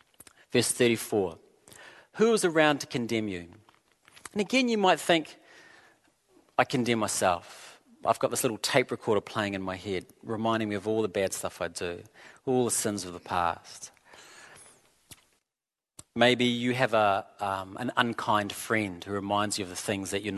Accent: Australian